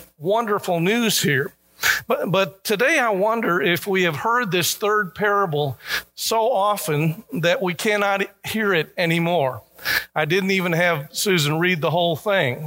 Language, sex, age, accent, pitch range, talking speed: English, male, 50-69, American, 150-200 Hz, 150 wpm